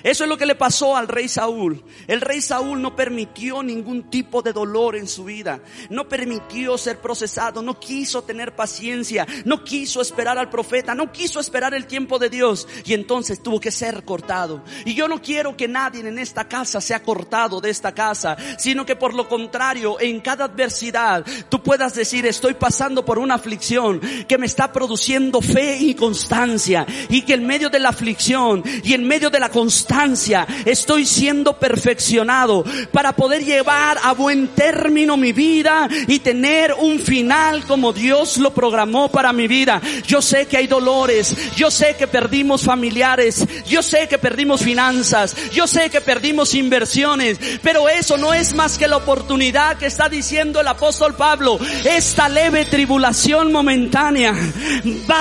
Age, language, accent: 40-59, Spanish, Mexican